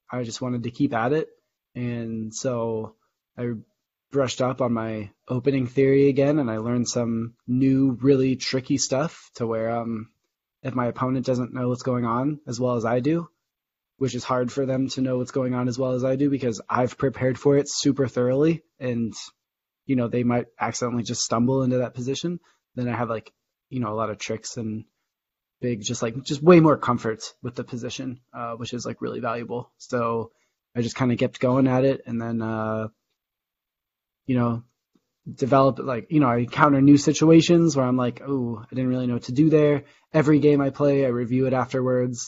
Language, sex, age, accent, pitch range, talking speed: English, male, 20-39, American, 120-135 Hz, 205 wpm